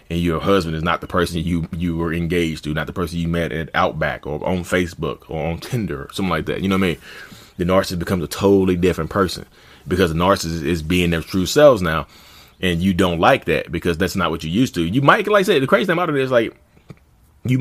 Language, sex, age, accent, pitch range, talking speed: English, male, 30-49, American, 85-105 Hz, 255 wpm